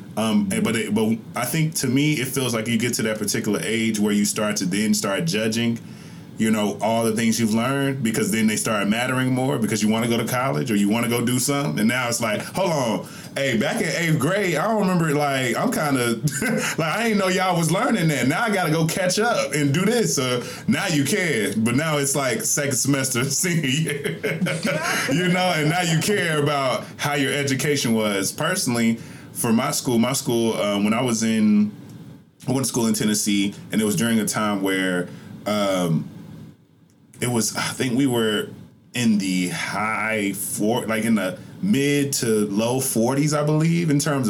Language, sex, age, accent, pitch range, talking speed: English, male, 20-39, American, 110-155 Hz, 210 wpm